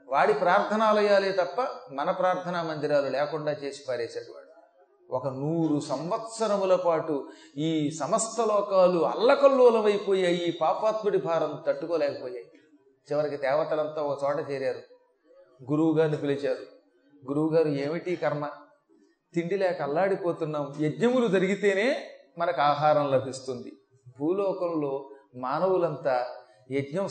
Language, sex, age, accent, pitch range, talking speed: Telugu, male, 30-49, native, 145-185 Hz, 95 wpm